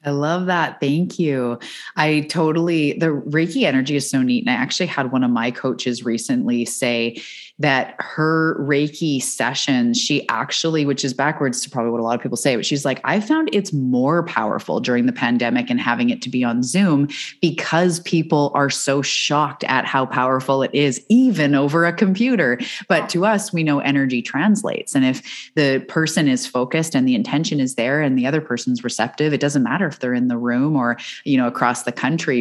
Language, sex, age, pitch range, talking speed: English, female, 20-39, 130-170 Hz, 200 wpm